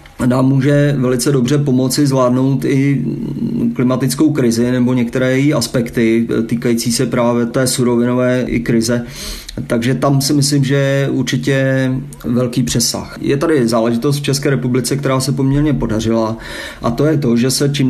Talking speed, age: 155 wpm, 30-49